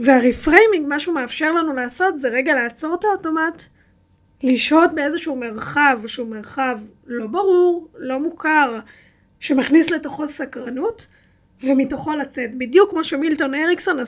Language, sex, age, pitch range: Hebrew, female, 20-39, 250-320 Hz